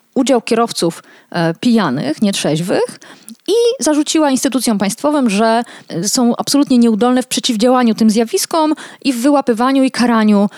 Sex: female